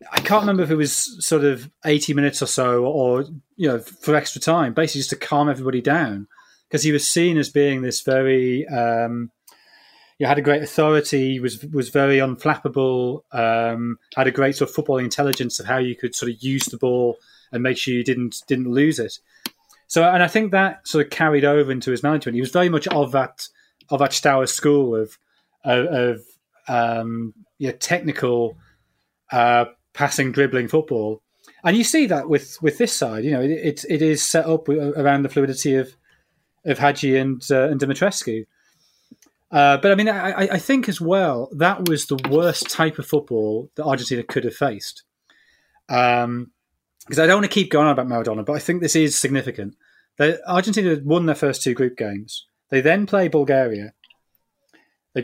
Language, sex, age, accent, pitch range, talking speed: English, male, 30-49, British, 125-155 Hz, 190 wpm